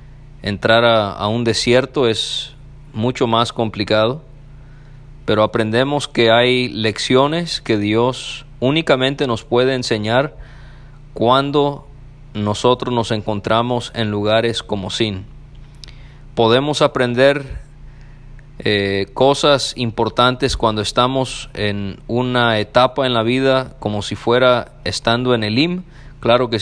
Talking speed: 115 wpm